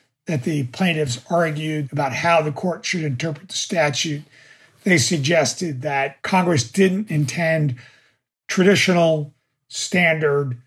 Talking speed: 110 wpm